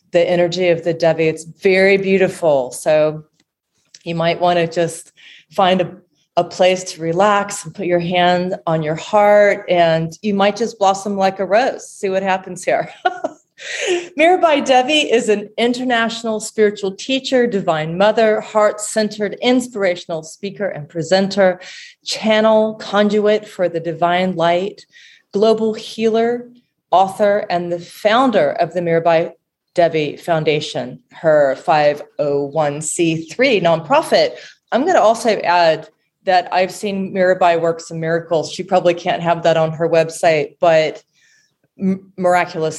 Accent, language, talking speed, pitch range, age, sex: American, English, 135 wpm, 165-215 Hz, 30-49, female